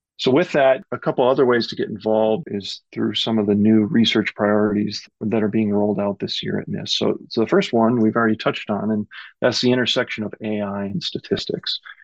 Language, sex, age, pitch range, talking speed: English, male, 40-59, 105-115 Hz, 220 wpm